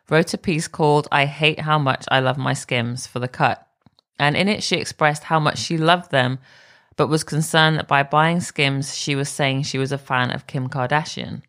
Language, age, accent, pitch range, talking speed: English, 20-39, British, 130-160 Hz, 220 wpm